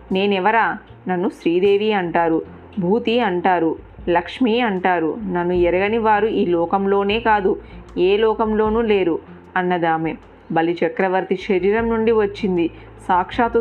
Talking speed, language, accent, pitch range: 100 wpm, Telugu, native, 180-215 Hz